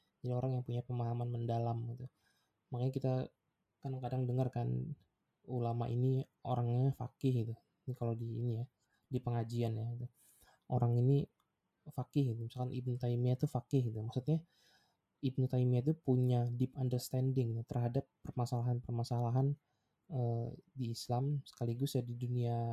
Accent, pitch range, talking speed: Indonesian, 120-130 Hz, 140 wpm